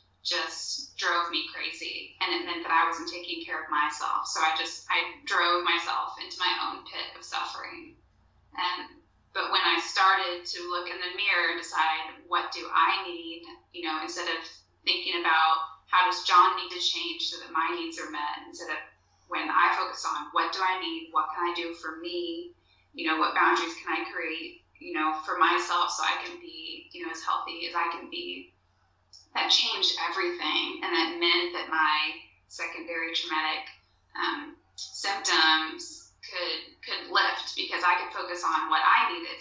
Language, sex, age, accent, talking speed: English, female, 10-29, American, 185 wpm